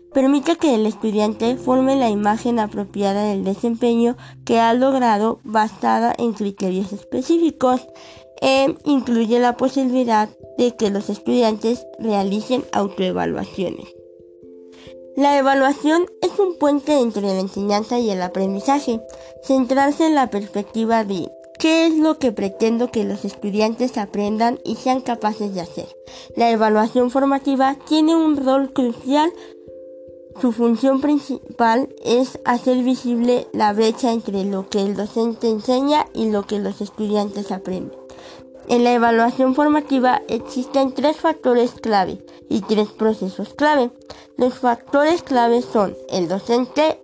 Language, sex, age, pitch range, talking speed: Spanish, female, 20-39, 205-265 Hz, 130 wpm